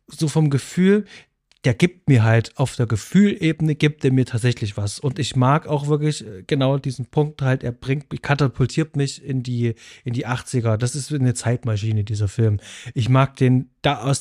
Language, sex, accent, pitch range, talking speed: German, male, German, 125-160 Hz, 185 wpm